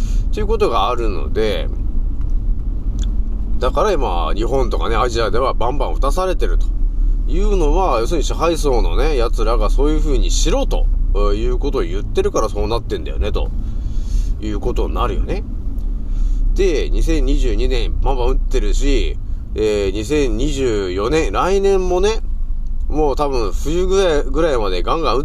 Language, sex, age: Japanese, male, 30-49